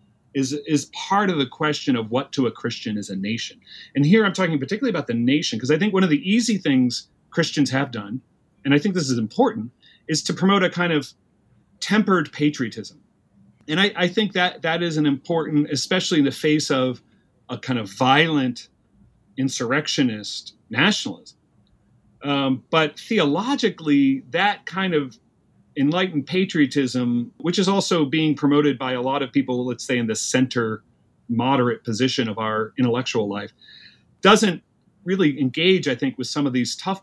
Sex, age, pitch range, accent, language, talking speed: male, 40-59, 125-170 Hz, American, English, 170 wpm